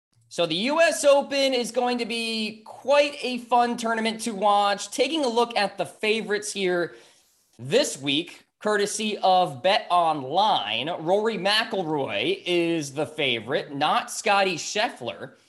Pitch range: 155-195 Hz